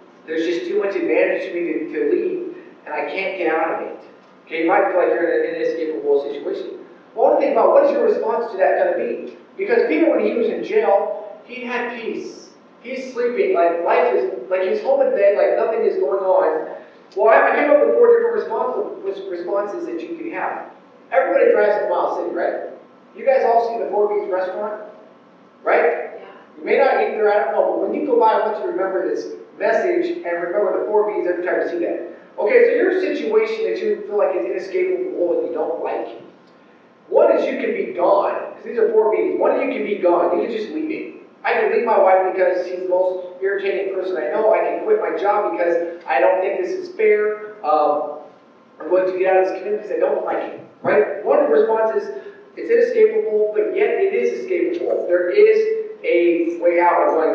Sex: male